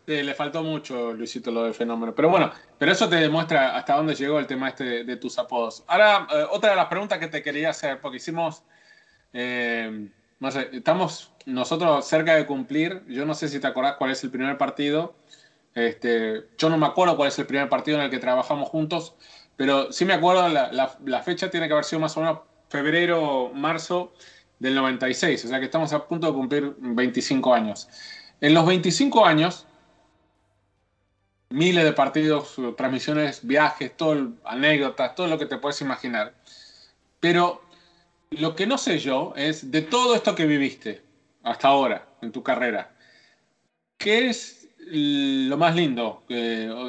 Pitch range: 130-175 Hz